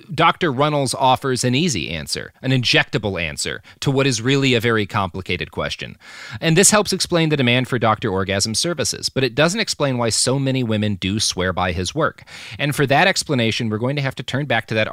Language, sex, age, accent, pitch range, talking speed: English, male, 30-49, American, 100-135 Hz, 215 wpm